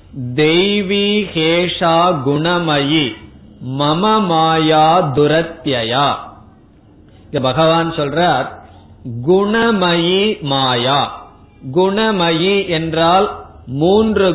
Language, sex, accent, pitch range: Tamil, male, native, 140-180 Hz